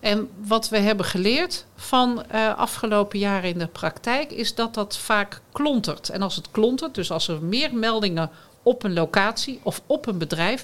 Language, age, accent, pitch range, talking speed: Dutch, 50-69, Dutch, 175-220 Hz, 185 wpm